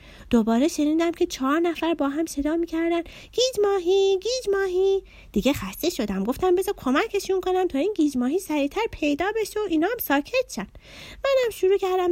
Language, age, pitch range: Persian, 30-49, 230-350 Hz